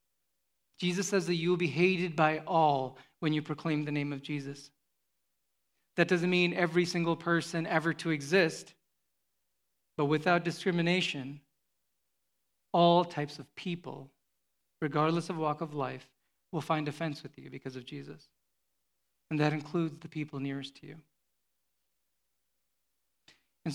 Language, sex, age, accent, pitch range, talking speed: English, male, 40-59, American, 145-180 Hz, 135 wpm